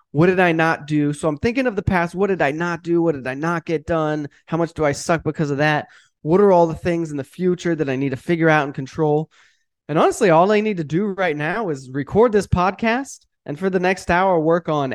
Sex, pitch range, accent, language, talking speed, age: male, 140-200 Hz, American, English, 265 wpm, 20-39